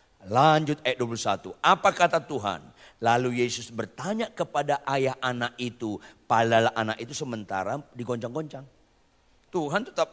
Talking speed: 120 wpm